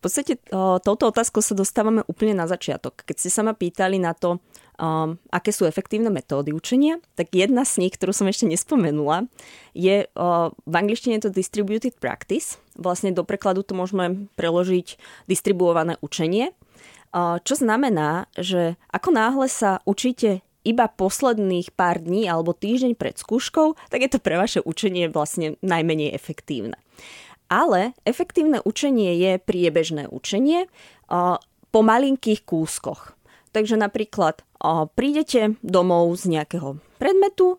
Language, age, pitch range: Czech, 20-39, 170-220 Hz